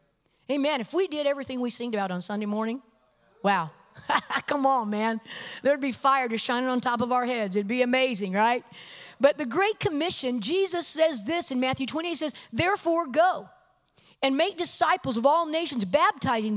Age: 50-69